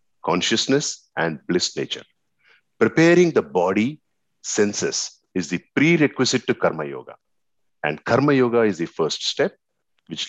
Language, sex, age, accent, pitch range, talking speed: English, male, 50-69, Indian, 90-130 Hz, 130 wpm